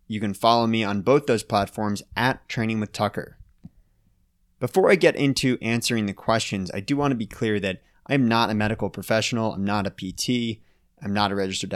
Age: 20-39